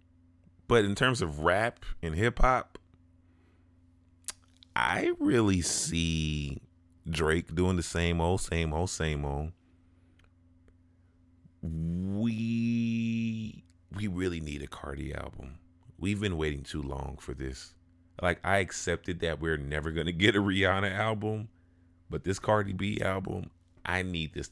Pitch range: 85-100 Hz